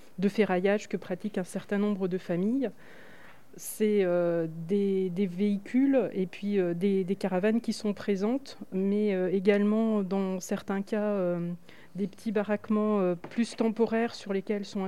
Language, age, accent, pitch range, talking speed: French, 30-49, French, 180-215 Hz, 155 wpm